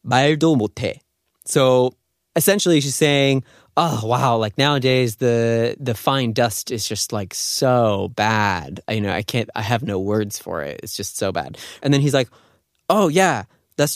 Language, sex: Korean, male